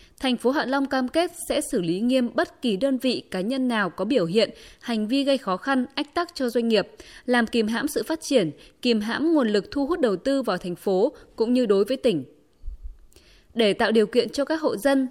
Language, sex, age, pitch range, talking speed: Vietnamese, female, 20-39, 210-270 Hz, 240 wpm